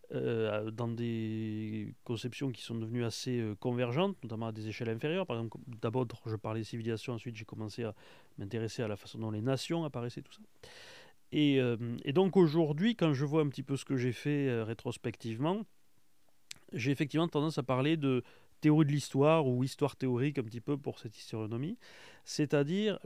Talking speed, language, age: 185 wpm, French, 30-49